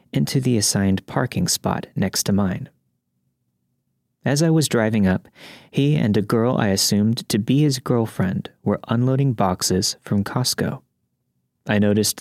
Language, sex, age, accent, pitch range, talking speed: English, male, 30-49, American, 100-135 Hz, 145 wpm